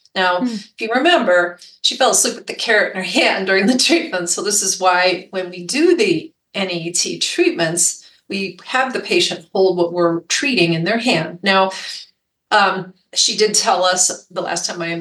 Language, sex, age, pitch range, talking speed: English, female, 30-49, 170-215 Hz, 190 wpm